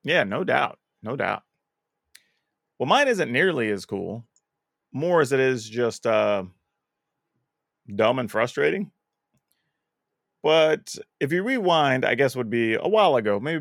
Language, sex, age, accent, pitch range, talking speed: English, male, 30-49, American, 110-155 Hz, 140 wpm